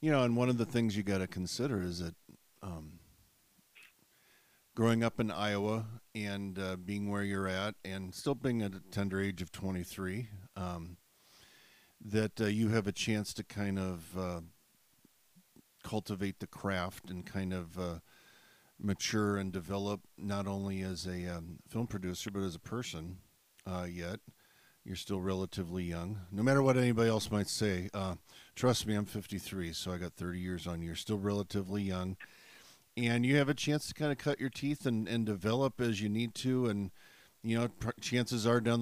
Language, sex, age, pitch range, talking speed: English, male, 50-69, 95-110 Hz, 185 wpm